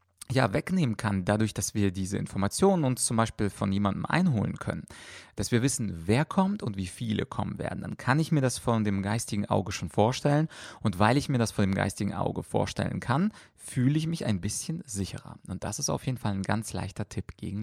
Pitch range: 105-140 Hz